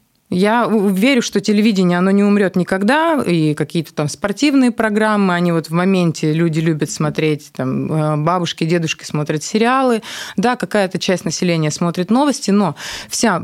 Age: 20-39